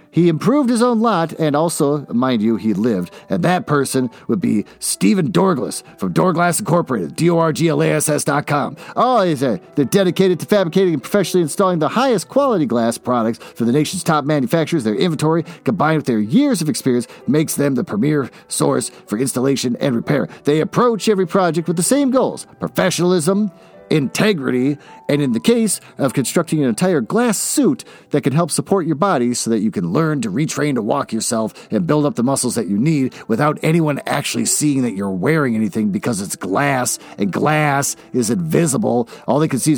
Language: English